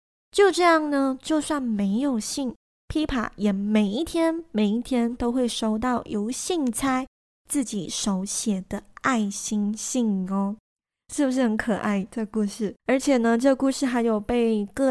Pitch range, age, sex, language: 215-270 Hz, 20-39, female, Chinese